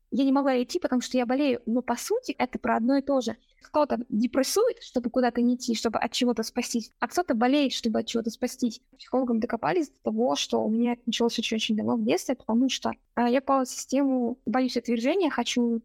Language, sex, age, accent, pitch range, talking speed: Russian, female, 20-39, native, 230-265 Hz, 215 wpm